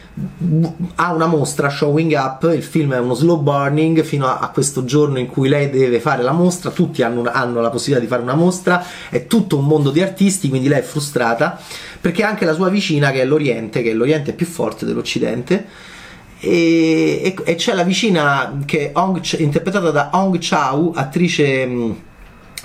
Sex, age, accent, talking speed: male, 30-49, native, 190 wpm